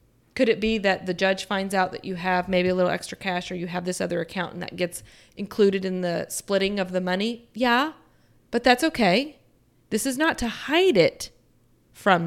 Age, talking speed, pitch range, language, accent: 30-49, 210 wpm, 180-235 Hz, English, American